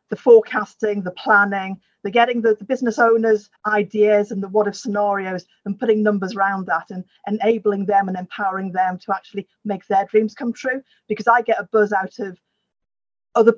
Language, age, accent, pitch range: English, 40-59, British, 200-235 Hz